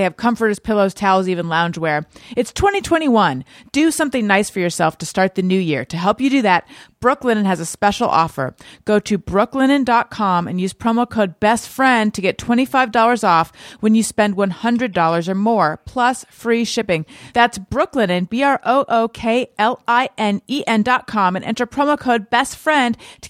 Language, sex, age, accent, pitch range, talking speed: English, female, 30-49, American, 195-245 Hz, 150 wpm